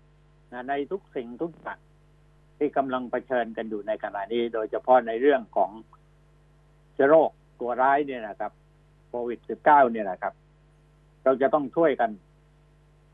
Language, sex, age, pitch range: Thai, male, 60-79, 130-150 Hz